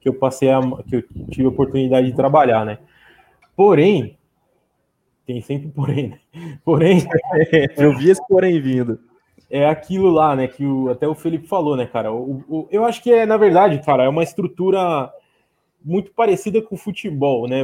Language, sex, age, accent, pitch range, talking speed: Portuguese, male, 20-39, Brazilian, 130-170 Hz, 165 wpm